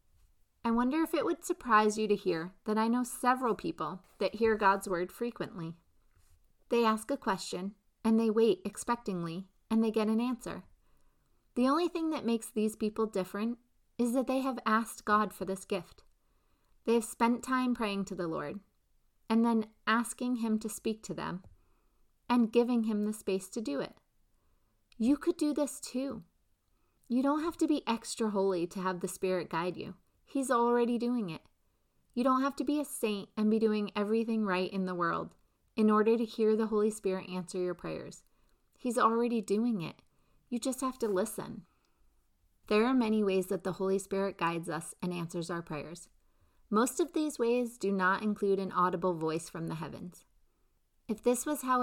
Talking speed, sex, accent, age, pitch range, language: 185 wpm, female, American, 30-49, 185-235 Hz, English